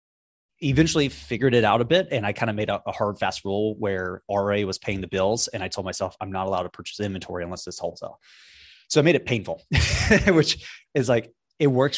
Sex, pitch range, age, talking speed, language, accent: male, 95-120 Hz, 20-39, 230 wpm, English, American